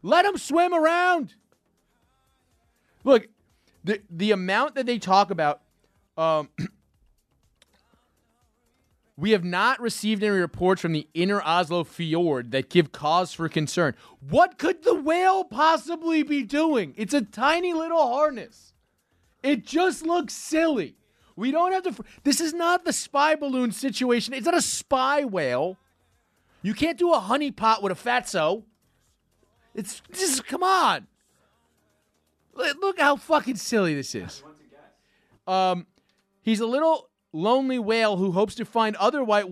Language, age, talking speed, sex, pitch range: English, 30-49, 140 wpm, male, 180-300 Hz